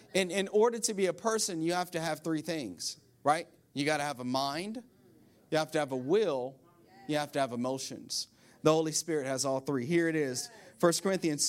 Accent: American